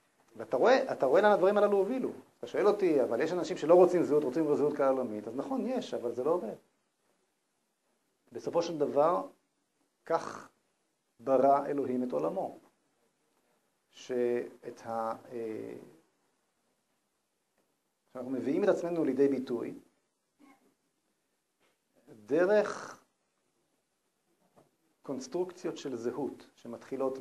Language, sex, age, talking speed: Hebrew, male, 50-69, 105 wpm